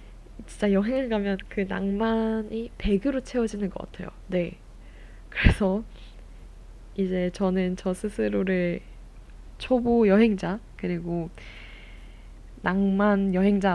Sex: female